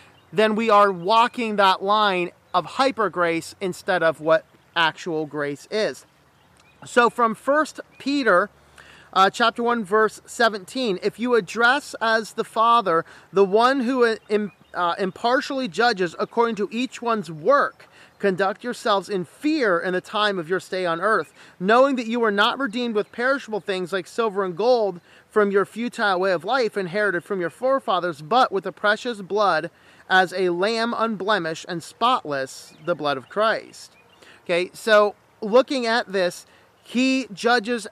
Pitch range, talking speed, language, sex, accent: 180-235 Hz, 155 wpm, English, male, American